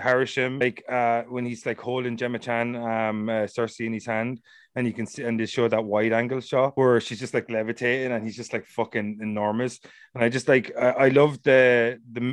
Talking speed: 225 wpm